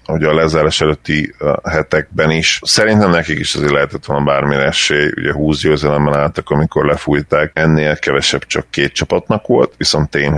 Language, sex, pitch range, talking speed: Hungarian, male, 75-85 Hz, 160 wpm